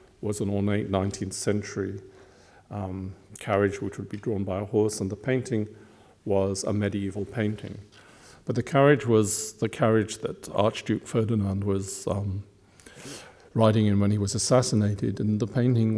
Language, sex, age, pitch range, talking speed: German, male, 50-69, 100-110 Hz, 155 wpm